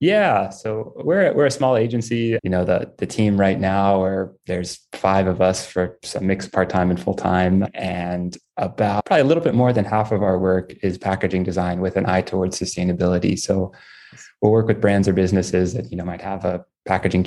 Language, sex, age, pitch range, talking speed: English, male, 20-39, 90-100 Hz, 205 wpm